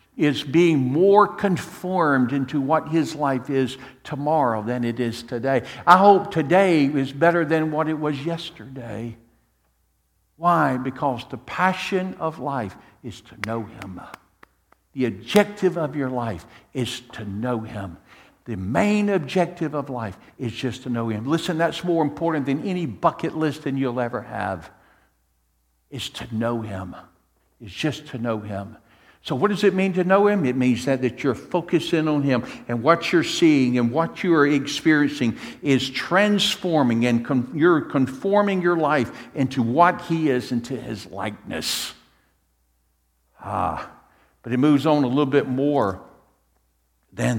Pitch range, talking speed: 115-165 Hz, 155 wpm